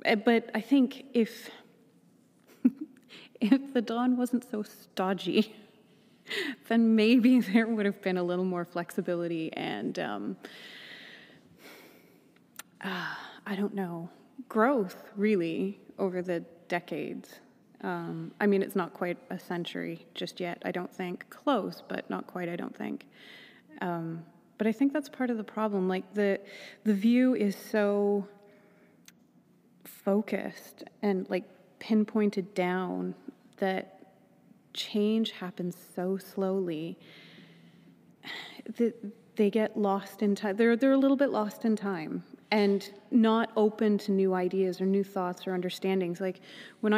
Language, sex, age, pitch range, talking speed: English, female, 20-39, 185-225 Hz, 130 wpm